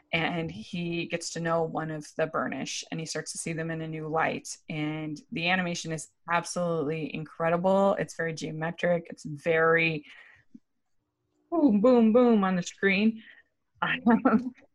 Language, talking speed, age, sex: English, 150 wpm, 20-39, female